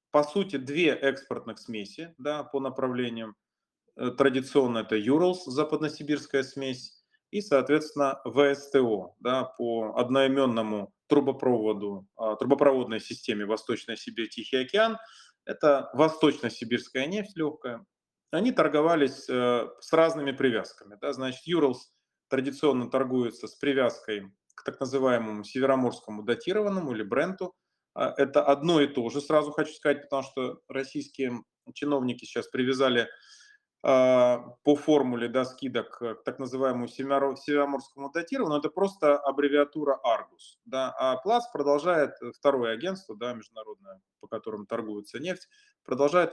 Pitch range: 125-150 Hz